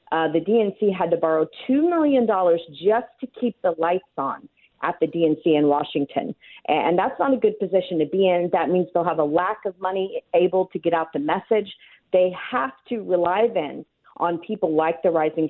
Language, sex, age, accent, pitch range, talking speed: English, female, 40-59, American, 160-205 Hz, 200 wpm